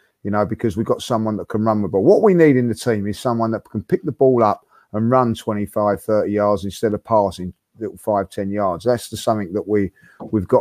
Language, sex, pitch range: English, male, 105-130 Hz